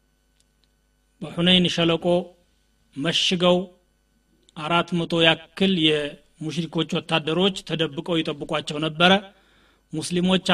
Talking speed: 65 wpm